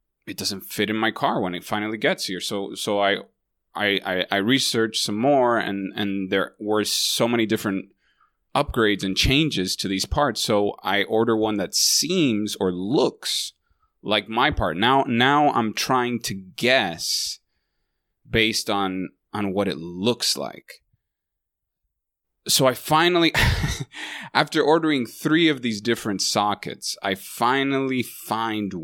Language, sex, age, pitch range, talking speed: English, male, 20-39, 95-115 Hz, 145 wpm